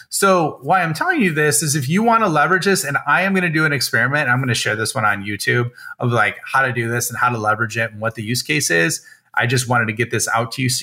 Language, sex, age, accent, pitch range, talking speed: English, male, 30-49, American, 120-155 Hz, 310 wpm